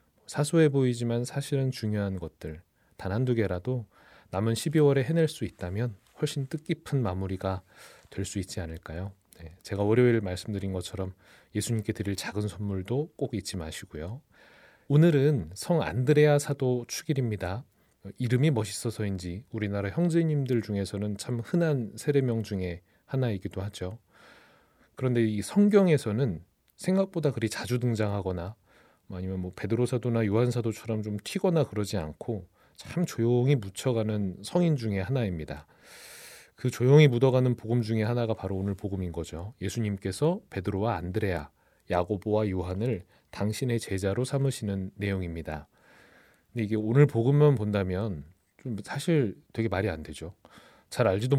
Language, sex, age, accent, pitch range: Korean, male, 30-49, native, 95-125 Hz